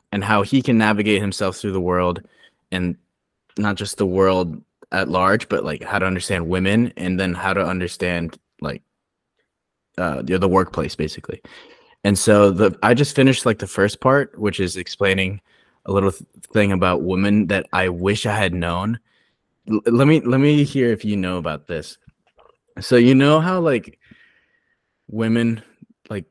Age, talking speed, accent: 20-39, 175 wpm, American